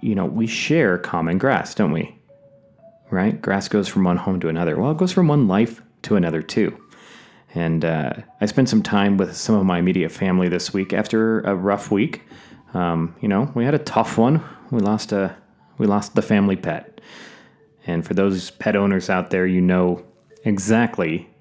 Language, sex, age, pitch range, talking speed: English, male, 30-49, 90-125 Hz, 195 wpm